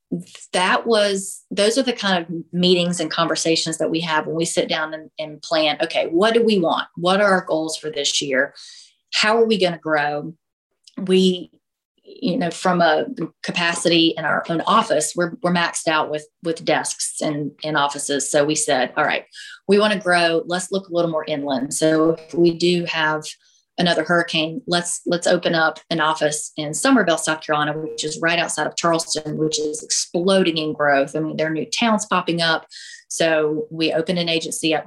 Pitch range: 155-175 Hz